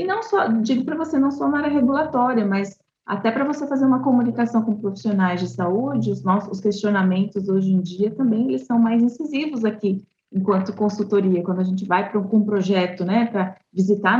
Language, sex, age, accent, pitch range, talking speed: Portuguese, female, 30-49, Brazilian, 195-255 Hz, 195 wpm